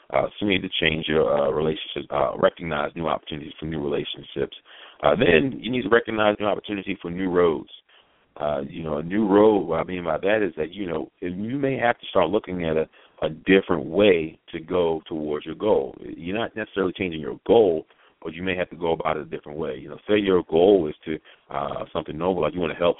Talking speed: 235 wpm